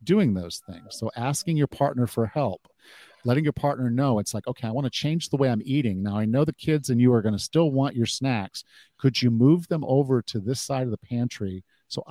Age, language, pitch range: 50-69, English, 110-140 Hz